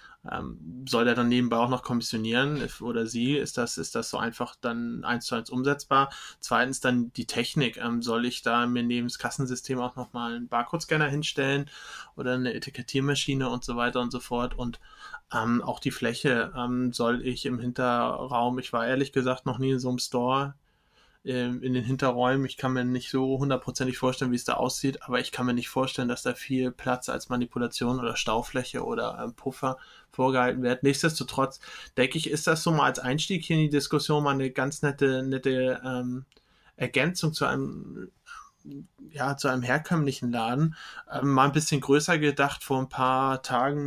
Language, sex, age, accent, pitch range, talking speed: German, male, 20-39, German, 125-140 Hz, 180 wpm